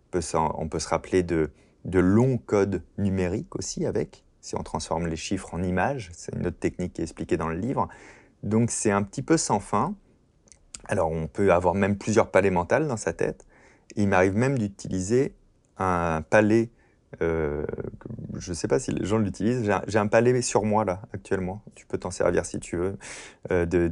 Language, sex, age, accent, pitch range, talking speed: French, male, 30-49, French, 90-115 Hz, 200 wpm